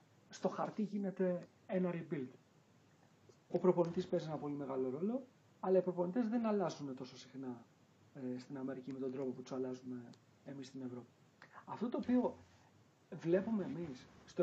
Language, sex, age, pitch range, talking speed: Greek, male, 40-59, 135-190 Hz, 150 wpm